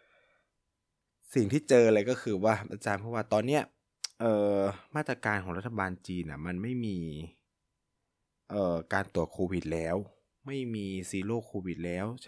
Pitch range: 90-110 Hz